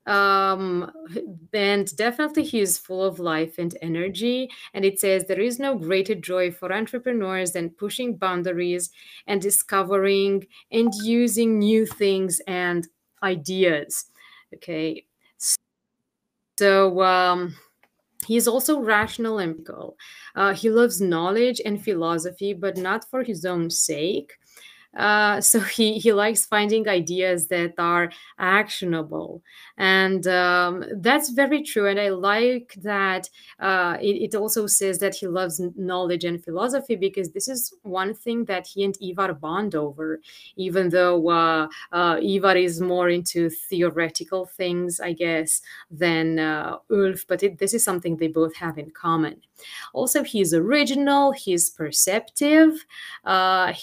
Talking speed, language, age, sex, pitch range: 135 wpm, English, 30-49, female, 175-215 Hz